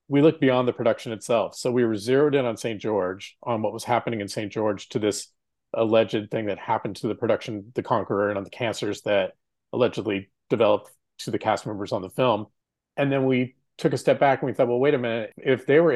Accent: American